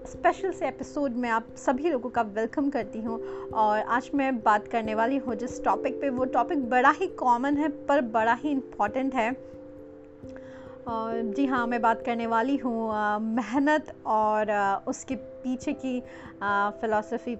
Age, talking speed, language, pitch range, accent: 30-49, 155 wpm, Hindi, 225-300 Hz, native